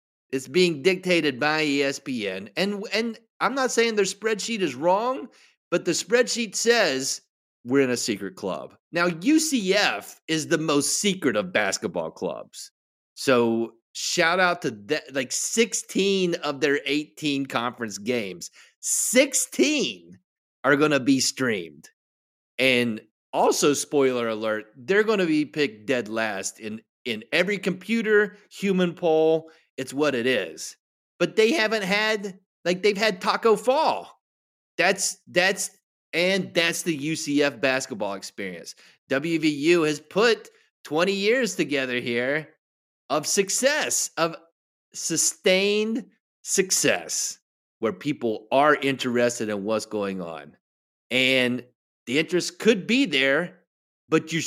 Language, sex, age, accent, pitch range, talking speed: English, male, 30-49, American, 130-200 Hz, 125 wpm